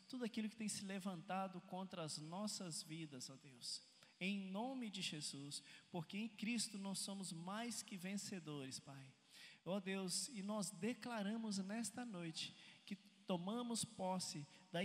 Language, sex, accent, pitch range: Portuguese, male, Brazilian, 155-200 Hz